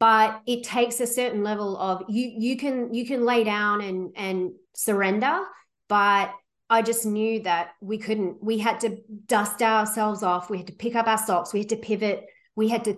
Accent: Australian